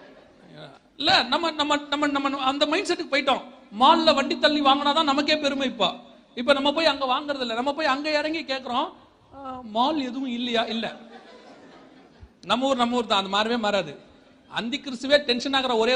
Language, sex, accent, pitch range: Tamil, male, native, 215-285 Hz